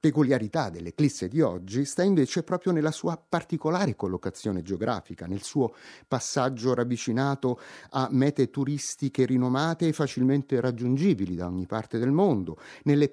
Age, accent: 30-49, native